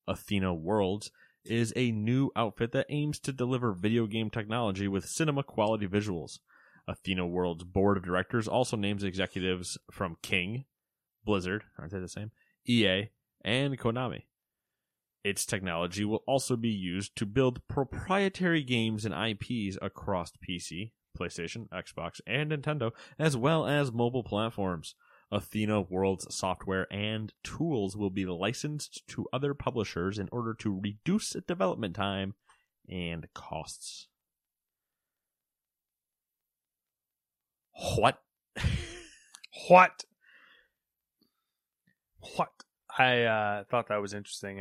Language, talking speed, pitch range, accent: English, 115 wpm, 95-120 Hz, American